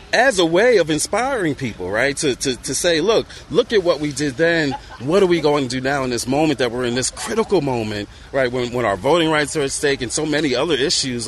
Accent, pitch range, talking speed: American, 120-150 Hz, 255 wpm